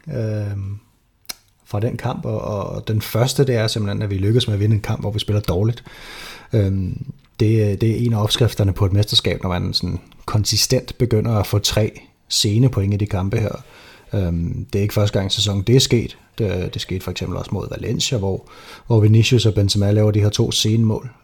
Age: 30-49